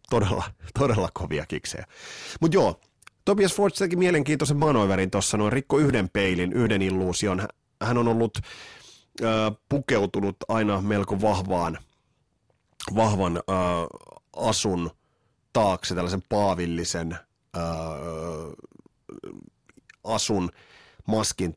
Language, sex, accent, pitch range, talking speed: Finnish, male, native, 90-115 Hz, 95 wpm